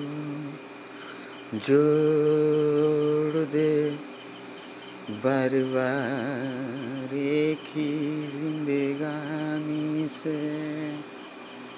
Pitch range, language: 140-155 Hz, Bengali